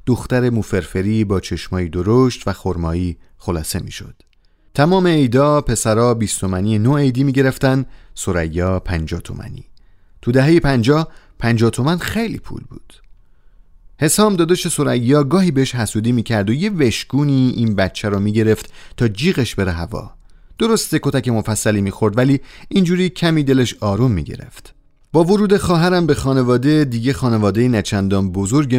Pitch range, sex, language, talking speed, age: 100-140 Hz, male, Persian, 135 wpm, 30-49